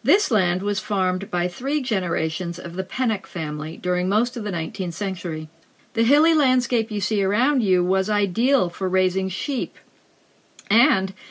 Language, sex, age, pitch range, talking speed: English, female, 50-69, 190-255 Hz, 160 wpm